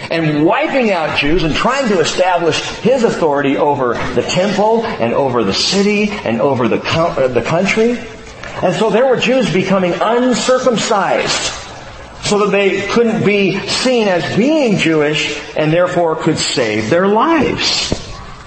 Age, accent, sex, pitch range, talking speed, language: 50-69, American, male, 155-215 Hz, 140 wpm, English